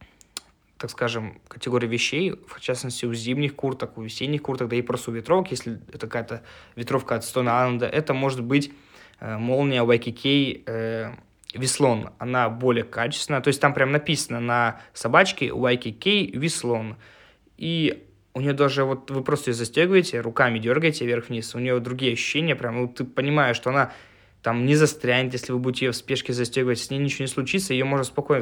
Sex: male